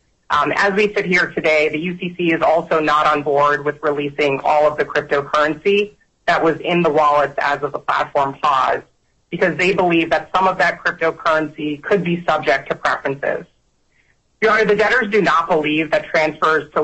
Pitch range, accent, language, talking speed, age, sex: 150-180 Hz, American, English, 185 wpm, 30-49, female